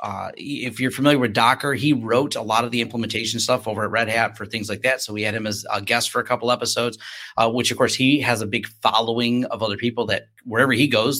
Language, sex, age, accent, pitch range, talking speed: English, male, 30-49, American, 110-145 Hz, 265 wpm